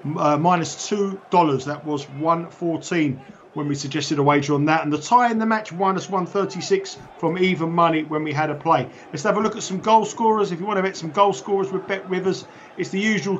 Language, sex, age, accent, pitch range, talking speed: English, male, 40-59, British, 155-195 Hz, 250 wpm